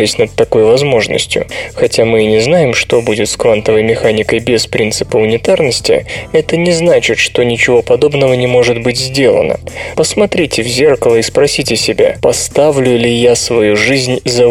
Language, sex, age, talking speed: Russian, male, 20-39, 155 wpm